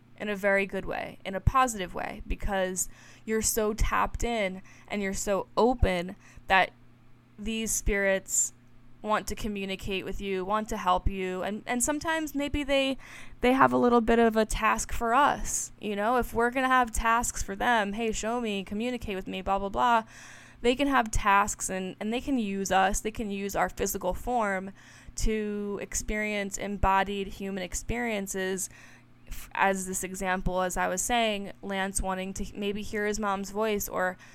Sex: female